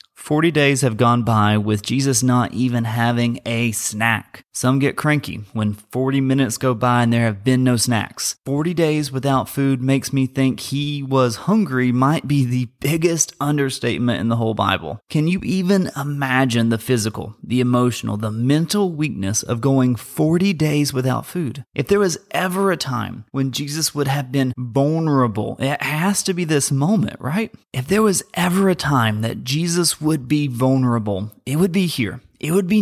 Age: 30-49